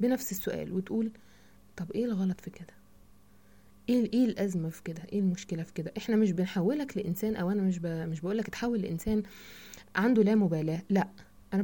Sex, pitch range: female, 170-210 Hz